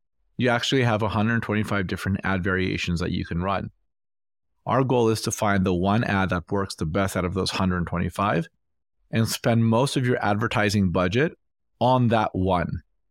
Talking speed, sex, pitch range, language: 170 wpm, male, 95-120 Hz, English